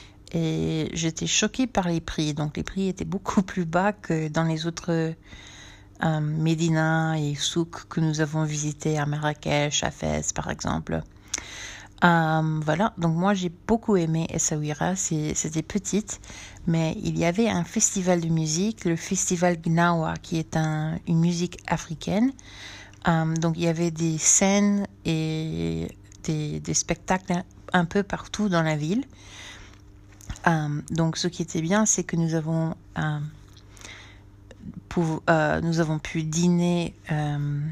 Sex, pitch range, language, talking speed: female, 145-170 Hz, French, 150 wpm